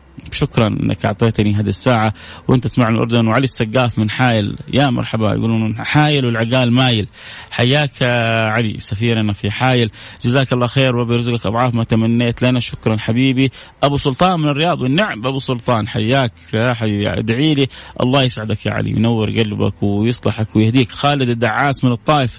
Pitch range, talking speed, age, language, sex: 110-135 Hz, 150 wpm, 30-49, English, male